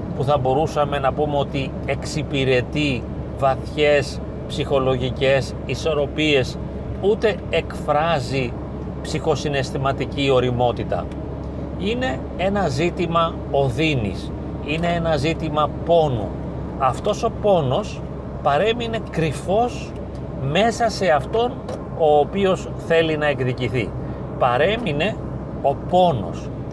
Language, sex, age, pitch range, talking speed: Greek, male, 40-59, 130-160 Hz, 85 wpm